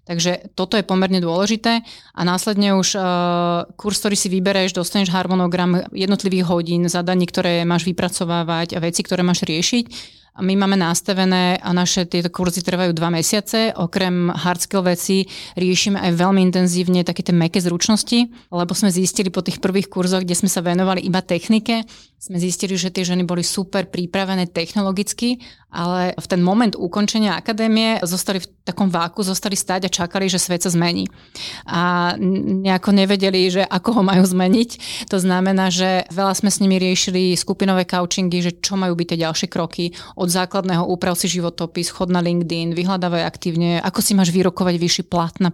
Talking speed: 170 wpm